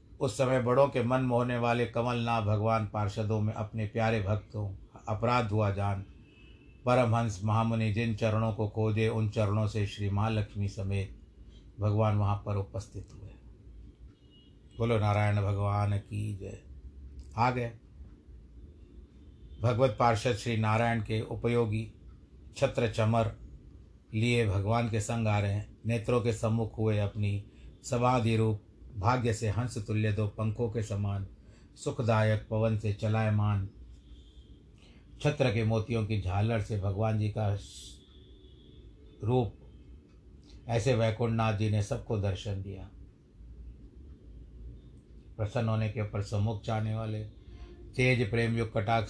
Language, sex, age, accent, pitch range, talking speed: Hindi, male, 60-79, native, 100-115 Hz, 125 wpm